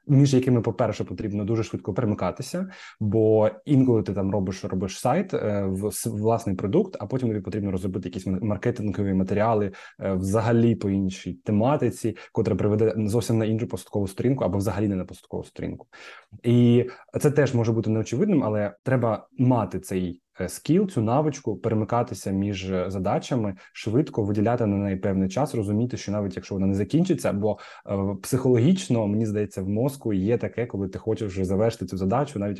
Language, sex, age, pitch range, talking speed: Ukrainian, male, 20-39, 100-120 Hz, 160 wpm